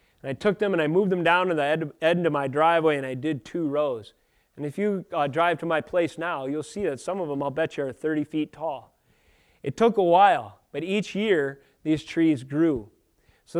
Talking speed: 235 wpm